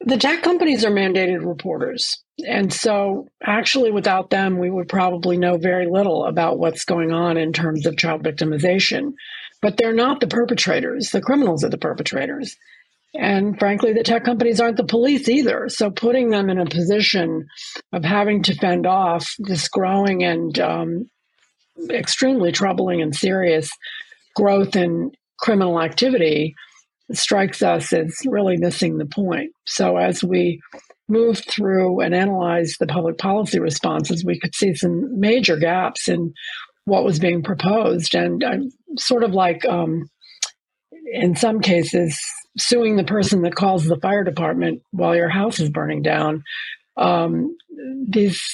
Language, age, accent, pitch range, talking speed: English, 50-69, American, 170-230 Hz, 150 wpm